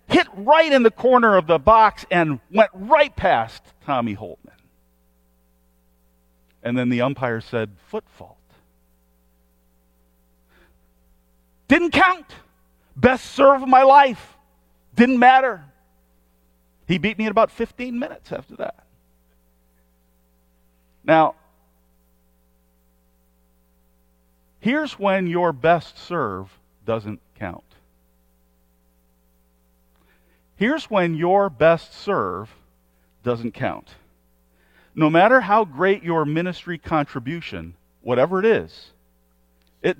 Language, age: English, 40-59